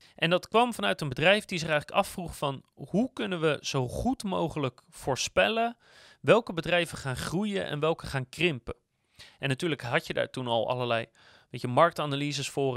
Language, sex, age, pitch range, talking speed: Dutch, male, 30-49, 135-190 Hz, 170 wpm